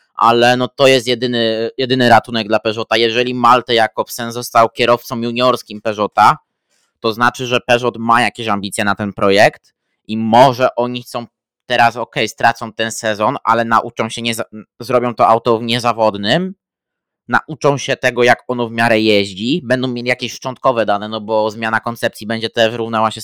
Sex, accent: male, native